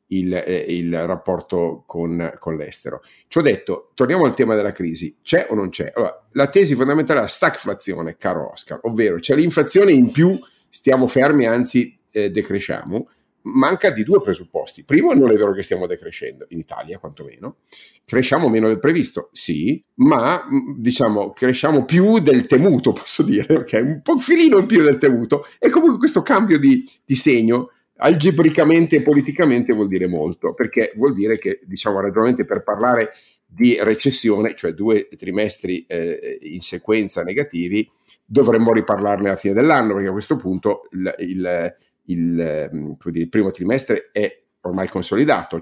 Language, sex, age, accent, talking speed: Italian, male, 50-69, native, 160 wpm